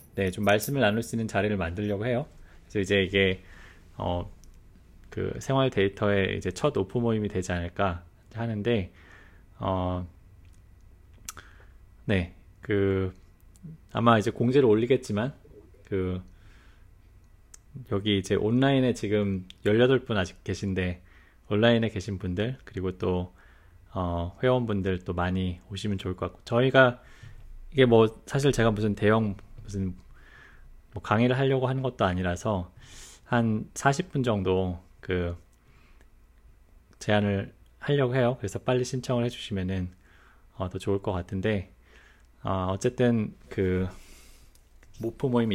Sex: male